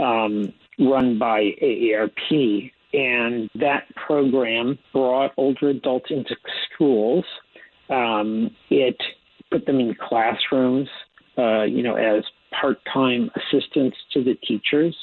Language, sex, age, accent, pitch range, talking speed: English, male, 50-69, American, 125-145 Hz, 110 wpm